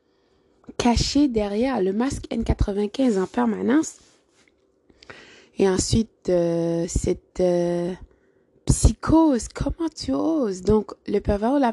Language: French